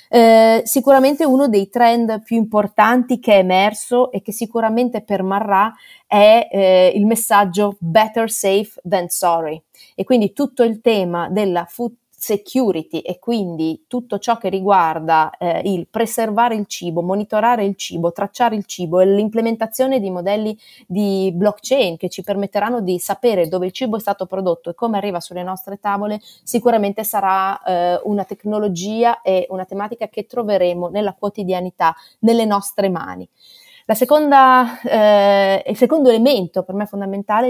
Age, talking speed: 30-49, 150 wpm